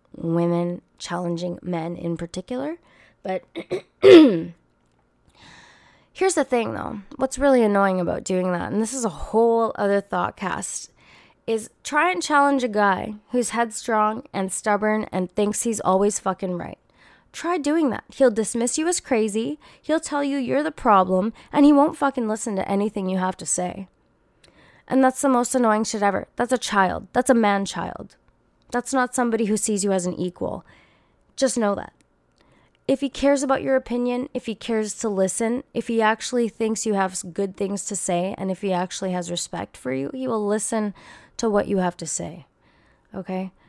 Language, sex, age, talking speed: English, female, 20-39, 180 wpm